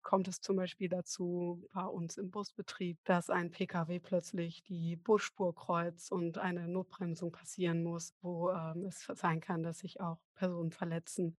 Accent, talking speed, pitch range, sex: German, 165 wpm, 175-205 Hz, female